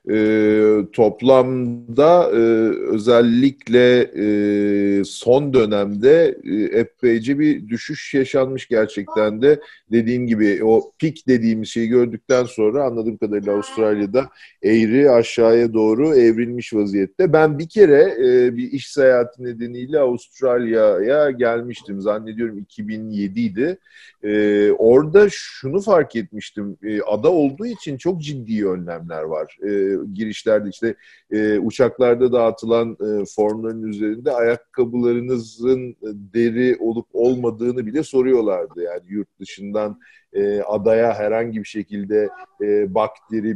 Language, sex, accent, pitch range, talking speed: Turkish, male, native, 105-130 Hz, 105 wpm